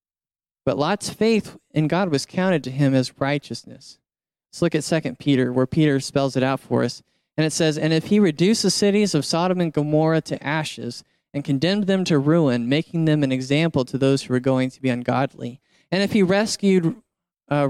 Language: English